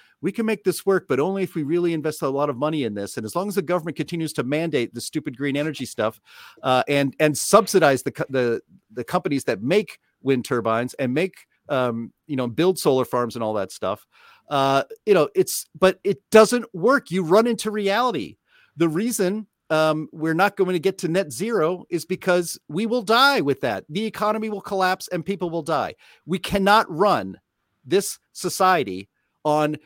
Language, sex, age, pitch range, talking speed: English, male, 40-59, 140-195 Hz, 200 wpm